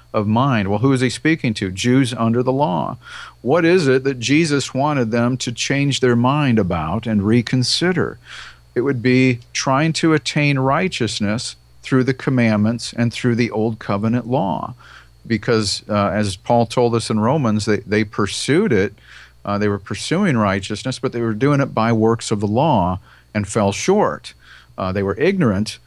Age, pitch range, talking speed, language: 50-69, 105-125 Hz, 175 wpm, English